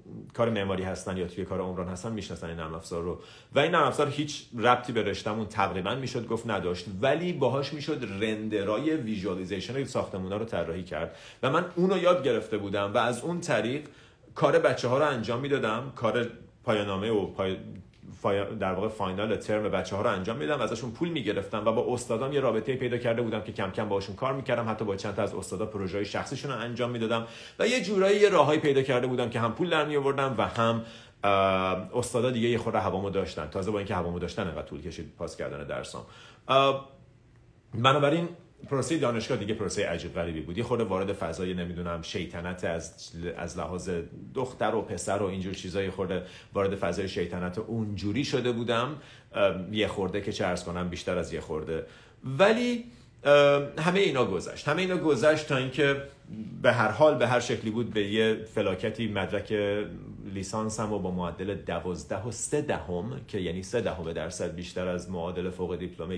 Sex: male